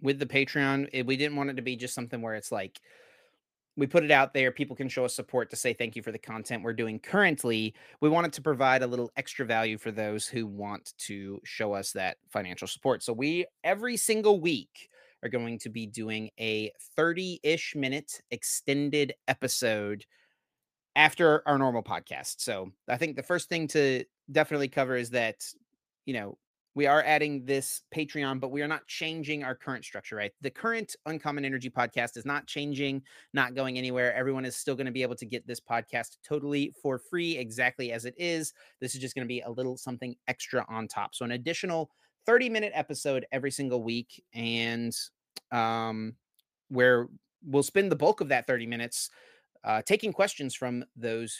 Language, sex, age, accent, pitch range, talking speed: English, male, 30-49, American, 115-150 Hz, 190 wpm